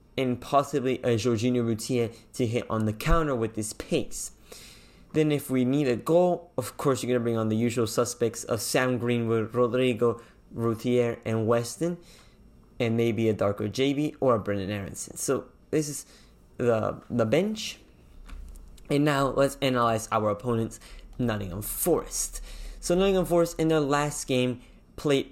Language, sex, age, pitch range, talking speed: English, male, 20-39, 115-145 Hz, 160 wpm